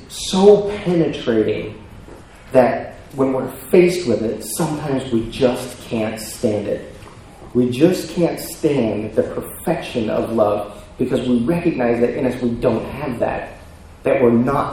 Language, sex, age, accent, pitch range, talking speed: English, male, 30-49, American, 110-140 Hz, 145 wpm